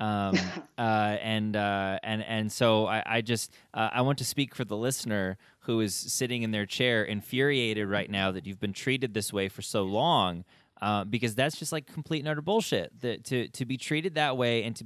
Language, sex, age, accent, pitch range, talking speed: English, male, 20-39, American, 110-145 Hz, 220 wpm